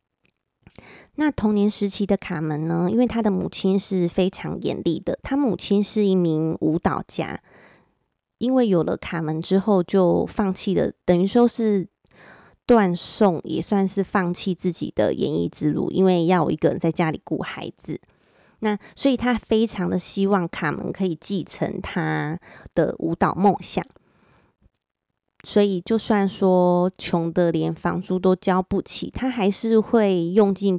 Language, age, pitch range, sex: Chinese, 20-39, 175-205 Hz, female